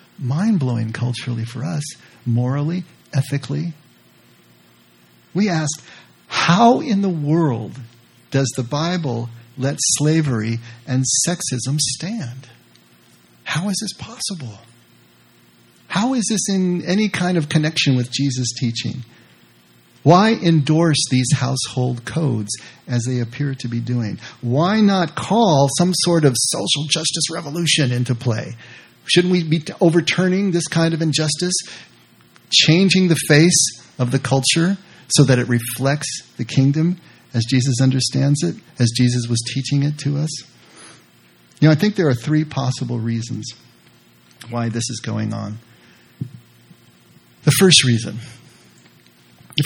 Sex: male